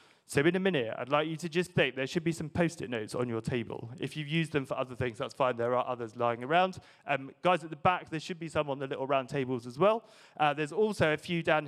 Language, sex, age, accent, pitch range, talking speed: English, male, 30-49, British, 135-180 Hz, 285 wpm